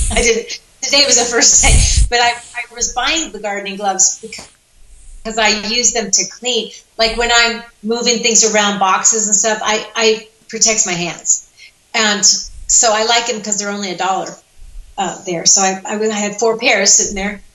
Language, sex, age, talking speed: English, female, 30-49, 190 wpm